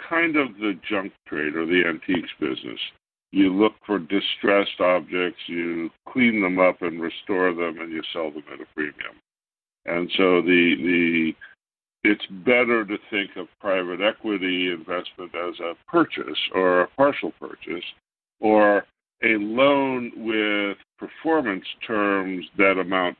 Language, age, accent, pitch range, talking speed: English, 60-79, American, 90-130 Hz, 140 wpm